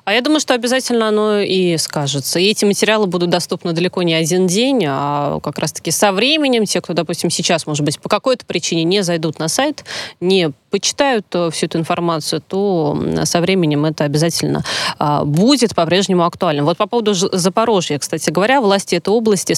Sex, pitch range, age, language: female, 170-210 Hz, 20-39, Russian